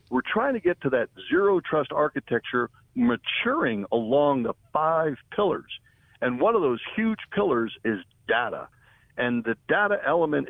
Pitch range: 115-175 Hz